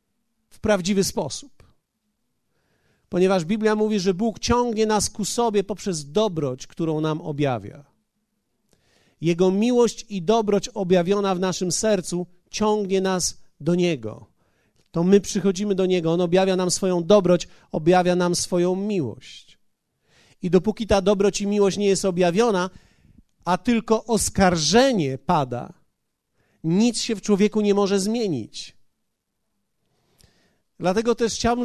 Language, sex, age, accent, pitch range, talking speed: Polish, male, 40-59, native, 175-220 Hz, 125 wpm